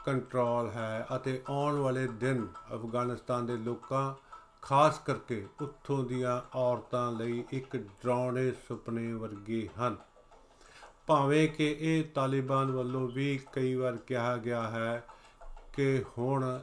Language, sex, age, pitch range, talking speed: Punjabi, male, 50-69, 120-145 Hz, 120 wpm